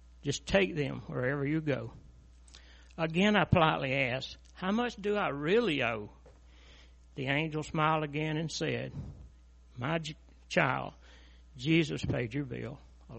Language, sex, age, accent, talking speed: English, male, 60-79, American, 130 wpm